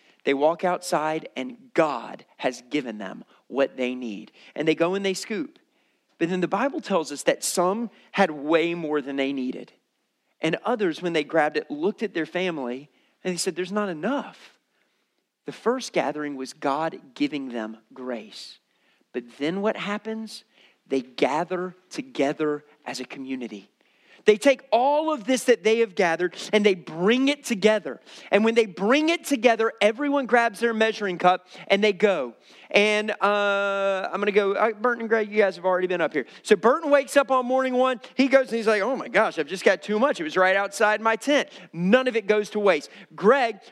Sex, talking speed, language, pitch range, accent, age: male, 195 wpm, English, 170-235 Hz, American, 40-59